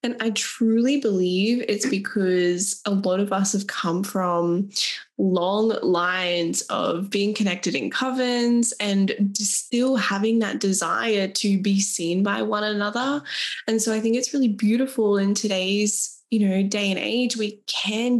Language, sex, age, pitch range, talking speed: English, female, 10-29, 195-225 Hz, 155 wpm